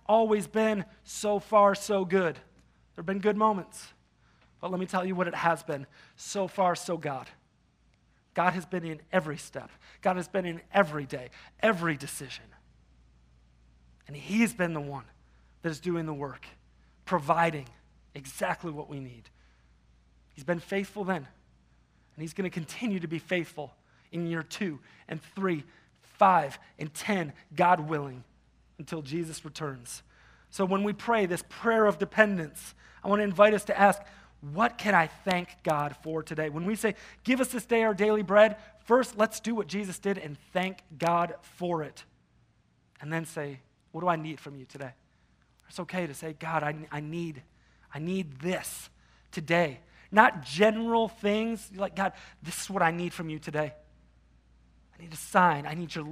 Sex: male